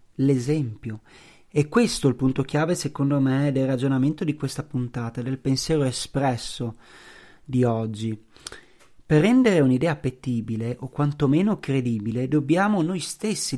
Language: Italian